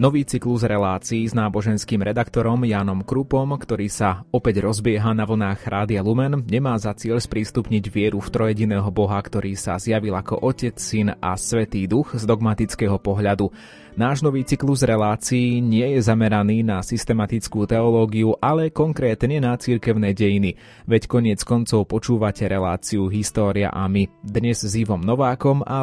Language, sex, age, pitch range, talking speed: Slovak, male, 30-49, 100-120 Hz, 150 wpm